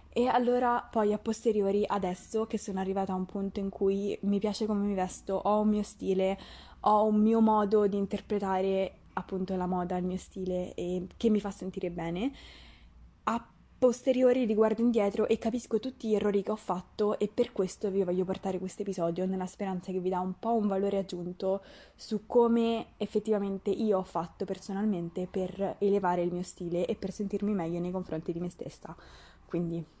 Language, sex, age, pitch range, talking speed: Italian, female, 20-39, 185-225 Hz, 185 wpm